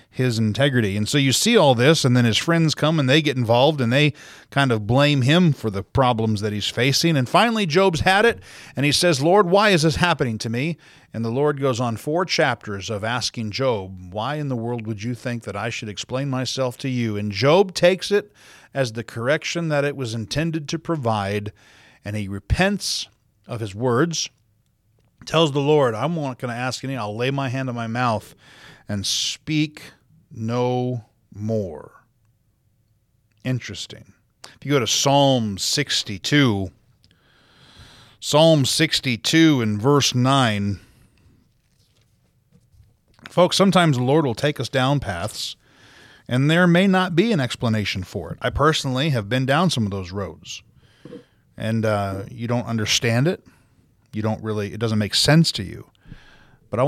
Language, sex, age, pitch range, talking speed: English, male, 40-59, 110-150 Hz, 170 wpm